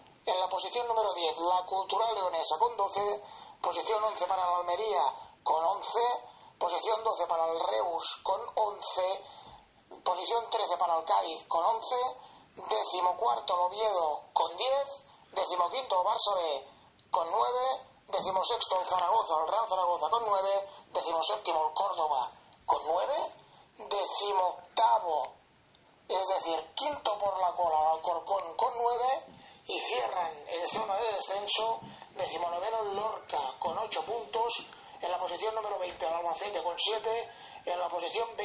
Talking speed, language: 145 wpm, English